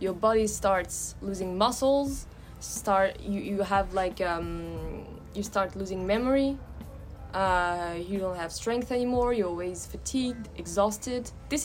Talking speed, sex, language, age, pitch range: 135 wpm, female, English, 20-39, 175-210 Hz